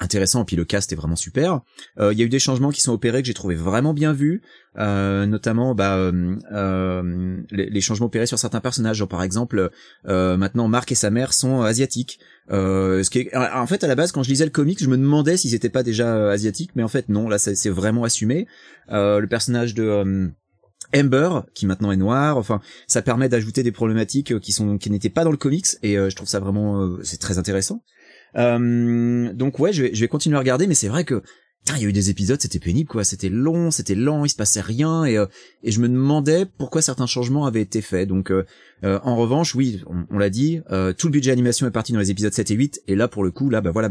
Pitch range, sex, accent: 100-130 Hz, male, French